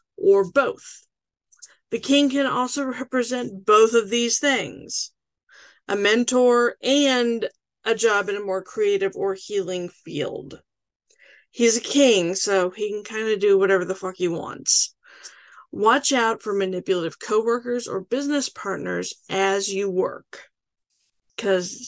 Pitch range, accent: 200-285 Hz, American